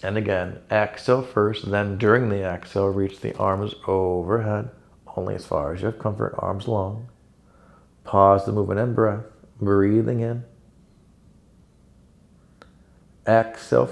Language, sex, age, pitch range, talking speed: English, male, 40-59, 95-115 Hz, 120 wpm